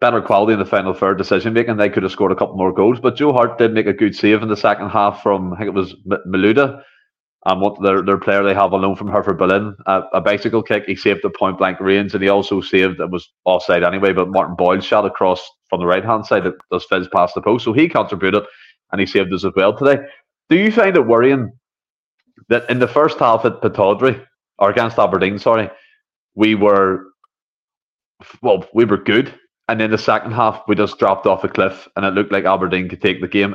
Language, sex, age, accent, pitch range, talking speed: English, male, 30-49, Irish, 95-120 Hz, 235 wpm